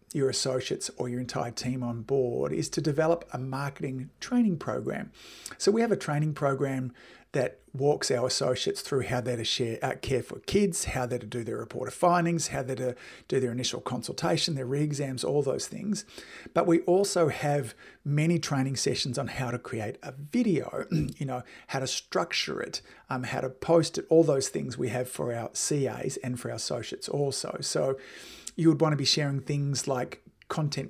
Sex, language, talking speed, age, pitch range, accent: male, English, 195 wpm, 50-69, 130-160 Hz, Australian